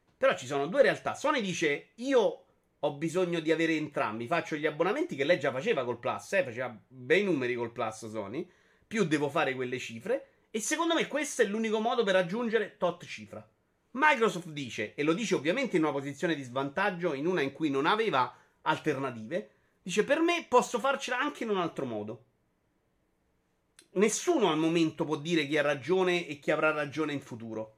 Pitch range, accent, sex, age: 145-215 Hz, native, male, 30-49